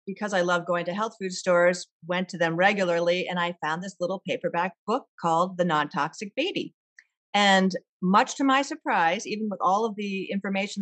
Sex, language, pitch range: female, English, 170-215 Hz